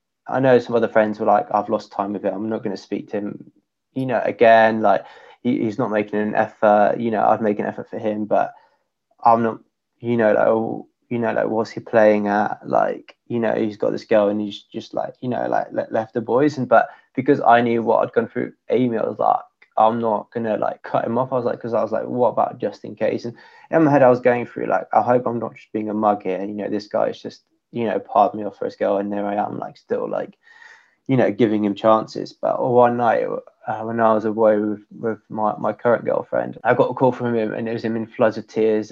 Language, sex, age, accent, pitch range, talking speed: English, male, 20-39, British, 105-120 Hz, 265 wpm